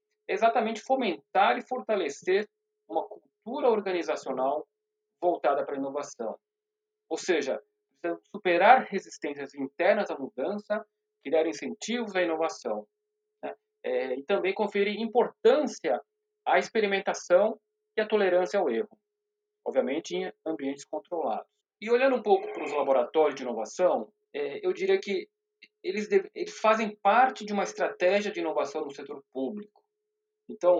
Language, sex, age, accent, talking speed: Portuguese, male, 40-59, Brazilian, 130 wpm